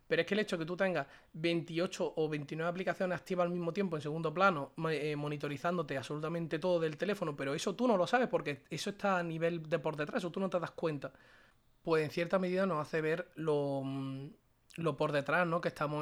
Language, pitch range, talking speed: Spanish, 145-175 Hz, 225 wpm